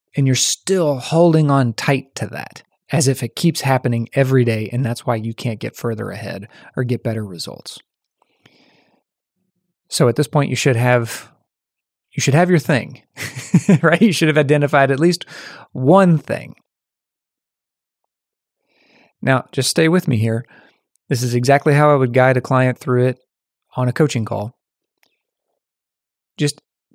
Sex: male